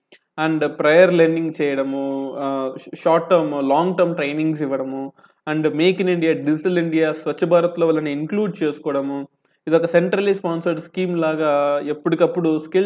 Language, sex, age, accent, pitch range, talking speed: Telugu, male, 20-39, native, 150-185 Hz, 135 wpm